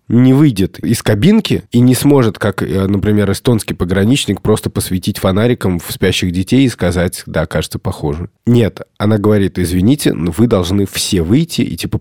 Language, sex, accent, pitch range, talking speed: Russian, male, native, 90-110 Hz, 160 wpm